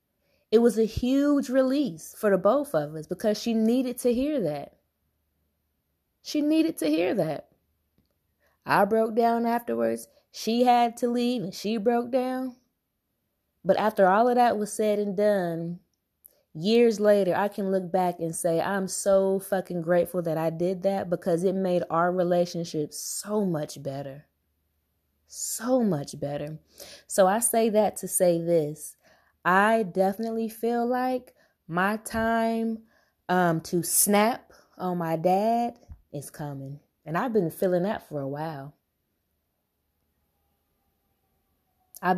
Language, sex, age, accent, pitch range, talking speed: English, female, 20-39, American, 150-215 Hz, 140 wpm